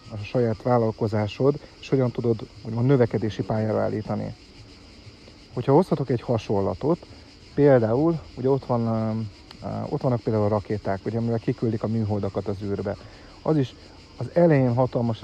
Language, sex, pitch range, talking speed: Hungarian, male, 110-130 Hz, 130 wpm